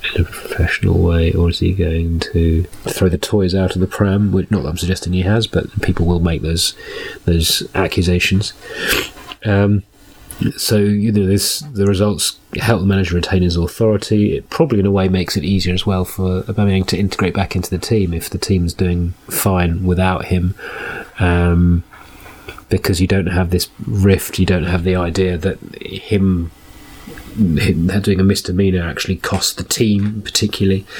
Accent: British